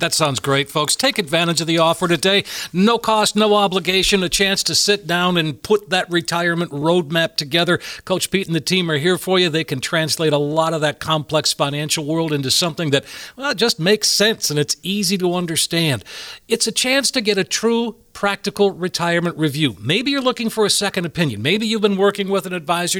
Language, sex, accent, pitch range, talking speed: English, male, American, 160-210 Hz, 205 wpm